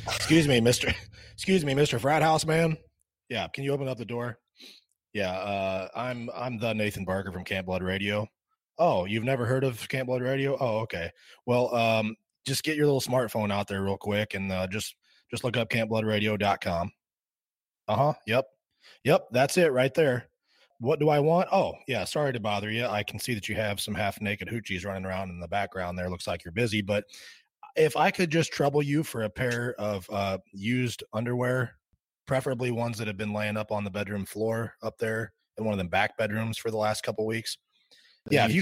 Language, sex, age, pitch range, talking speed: English, male, 20-39, 105-130 Hz, 205 wpm